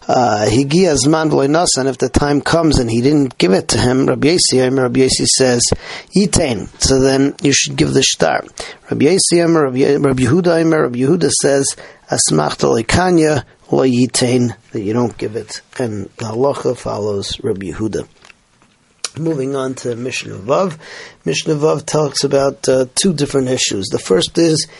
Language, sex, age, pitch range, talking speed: English, male, 40-59, 130-160 Hz, 150 wpm